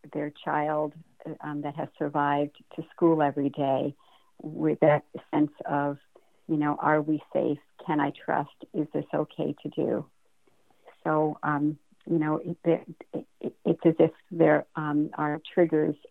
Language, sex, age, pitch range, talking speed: English, female, 60-79, 150-170 Hz, 140 wpm